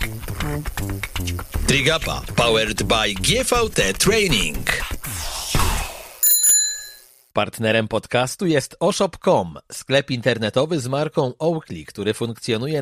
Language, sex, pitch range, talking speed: Polish, male, 115-160 Hz, 75 wpm